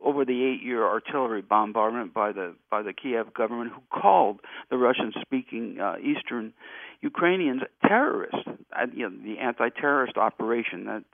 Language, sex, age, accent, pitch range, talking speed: English, male, 60-79, American, 115-160 Hz, 135 wpm